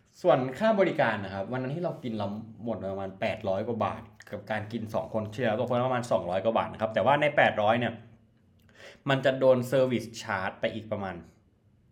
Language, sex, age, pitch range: Thai, male, 20-39, 105-130 Hz